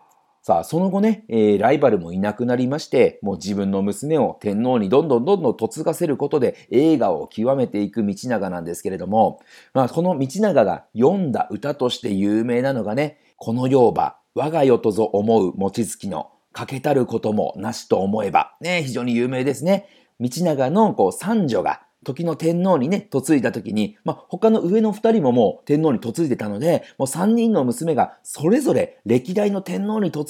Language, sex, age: Japanese, male, 40-59